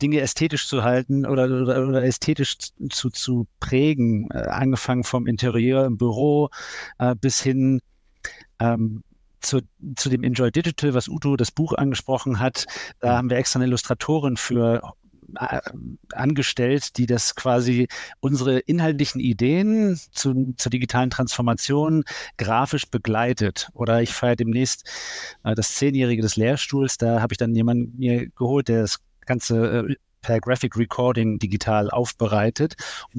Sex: male